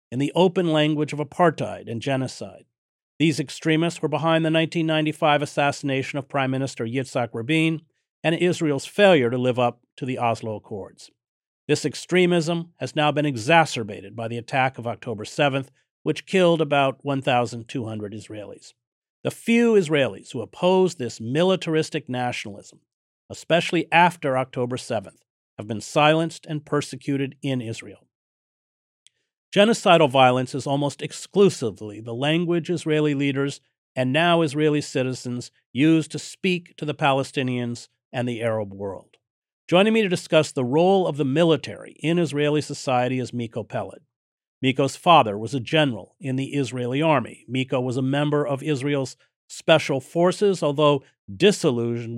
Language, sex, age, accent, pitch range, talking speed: English, male, 50-69, American, 125-160 Hz, 140 wpm